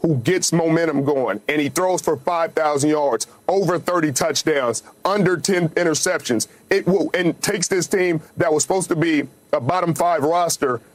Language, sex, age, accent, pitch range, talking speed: English, male, 40-59, American, 155-190 Hz, 160 wpm